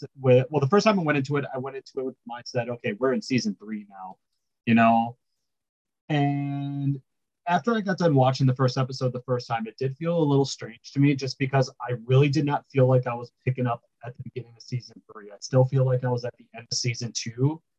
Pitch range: 120-145 Hz